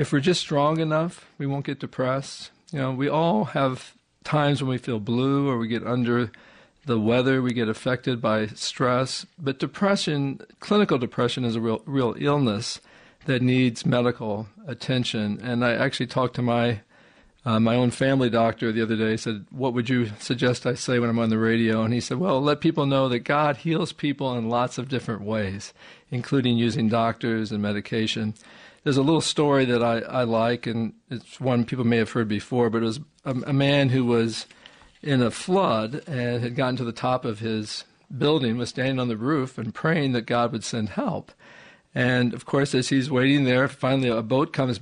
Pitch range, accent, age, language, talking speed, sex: 120-145 Hz, American, 50-69, English, 200 wpm, male